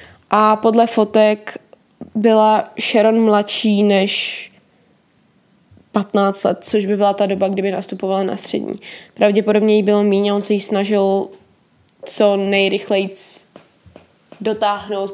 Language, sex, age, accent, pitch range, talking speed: Czech, female, 20-39, native, 200-225 Hz, 115 wpm